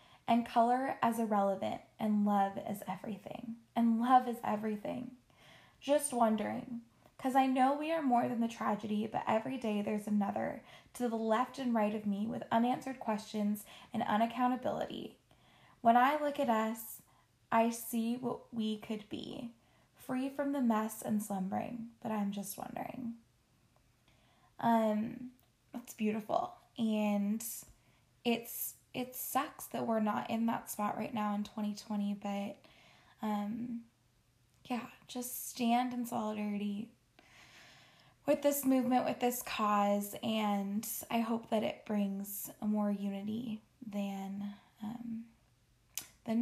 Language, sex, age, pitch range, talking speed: English, female, 10-29, 210-245 Hz, 130 wpm